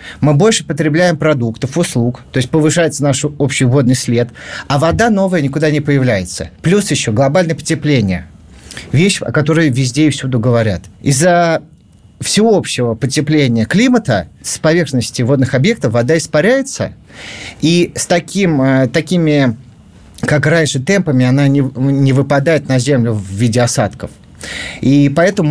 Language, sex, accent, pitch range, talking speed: Russian, male, native, 125-175 Hz, 130 wpm